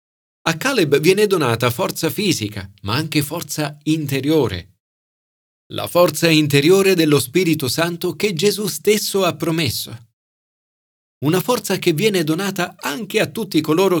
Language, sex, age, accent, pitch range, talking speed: Italian, male, 40-59, native, 105-160 Hz, 130 wpm